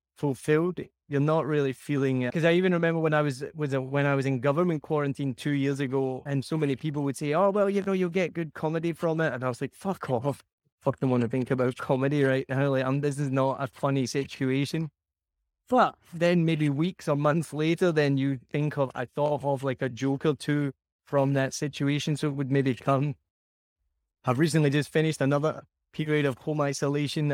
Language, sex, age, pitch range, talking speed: English, male, 20-39, 130-155 Hz, 215 wpm